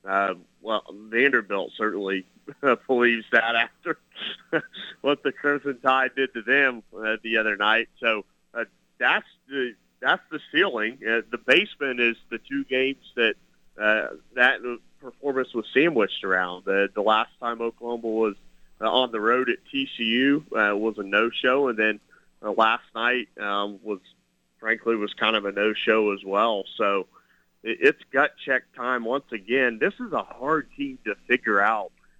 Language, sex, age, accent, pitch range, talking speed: English, male, 30-49, American, 105-130 Hz, 165 wpm